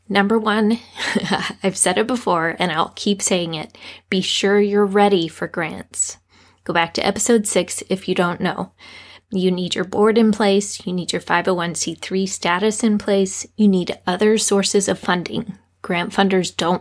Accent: American